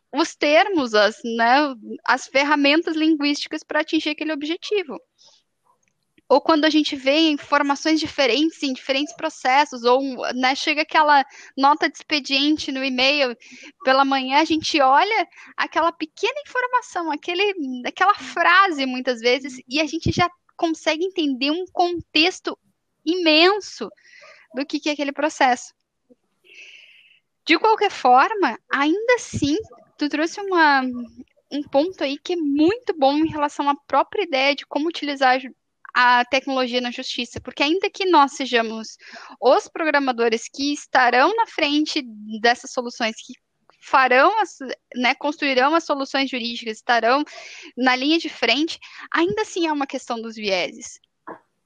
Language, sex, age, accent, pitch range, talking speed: Portuguese, female, 10-29, Brazilian, 260-325 Hz, 130 wpm